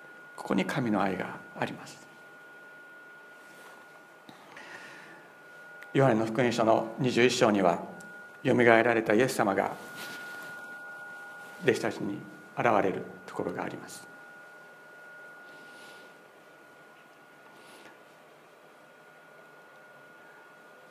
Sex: male